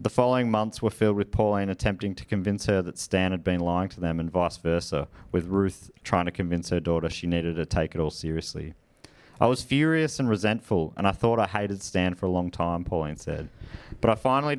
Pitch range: 90-115 Hz